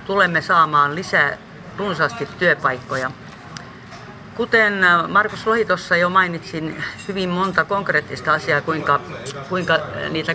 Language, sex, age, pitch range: Finnish, female, 40-59, 155-190 Hz